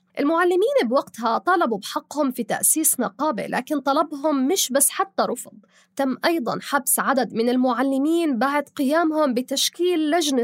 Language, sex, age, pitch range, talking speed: Arabic, female, 20-39, 240-310 Hz, 130 wpm